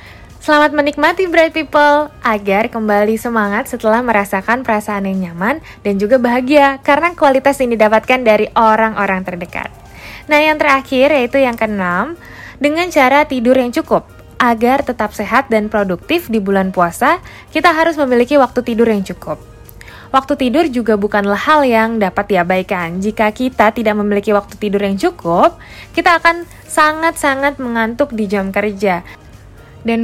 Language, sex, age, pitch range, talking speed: Indonesian, female, 20-39, 205-275 Hz, 145 wpm